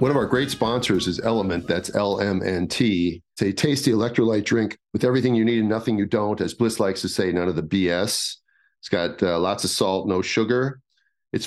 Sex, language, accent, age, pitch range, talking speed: male, English, American, 40-59, 95-115 Hz, 210 wpm